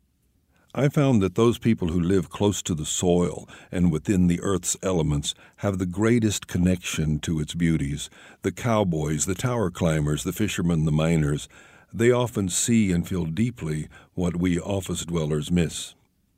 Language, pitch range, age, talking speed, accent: English, 80-105 Hz, 60-79, 160 wpm, American